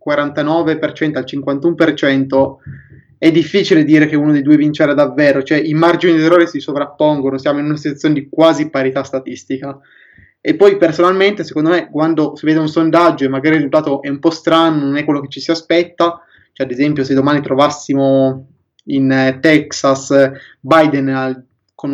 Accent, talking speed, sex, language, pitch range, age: native, 160 wpm, male, Italian, 135-160 Hz, 20-39